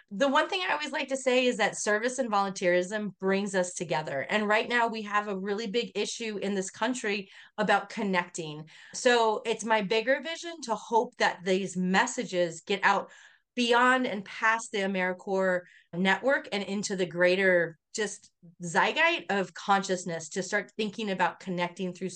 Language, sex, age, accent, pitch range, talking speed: English, female, 30-49, American, 185-245 Hz, 170 wpm